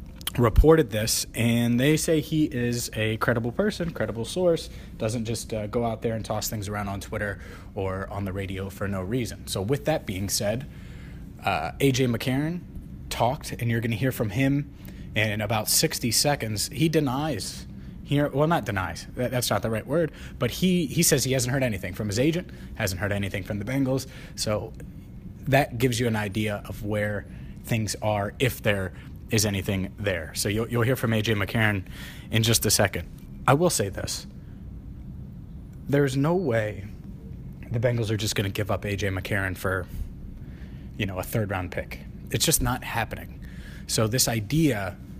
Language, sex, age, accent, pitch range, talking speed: English, male, 30-49, American, 100-130 Hz, 180 wpm